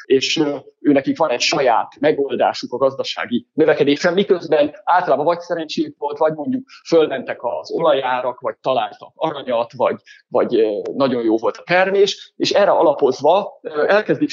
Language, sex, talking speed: Hungarian, male, 140 wpm